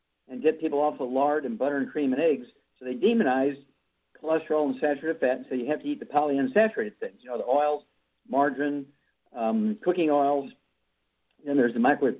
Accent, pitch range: American, 130-155 Hz